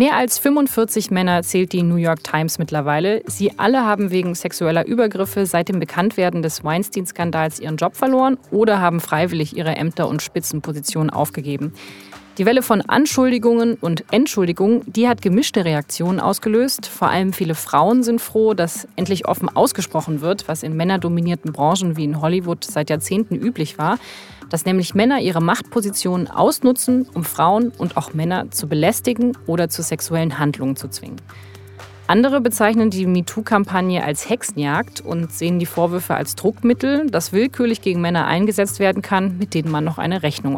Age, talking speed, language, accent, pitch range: 30-49, 160 wpm, German, German, 160-220 Hz